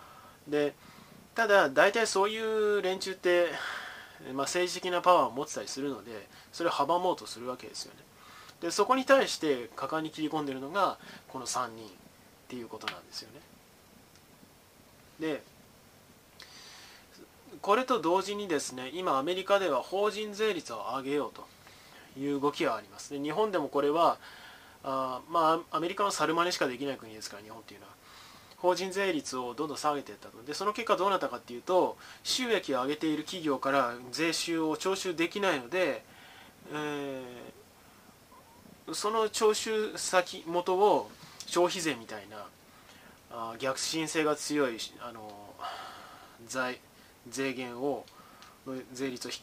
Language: Japanese